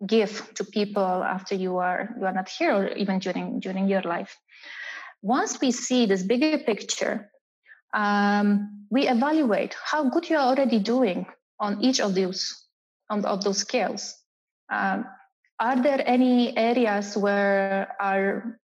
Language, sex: English, female